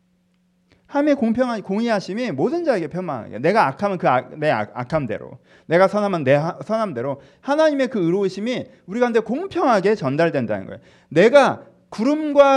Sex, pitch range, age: male, 165-250 Hz, 40-59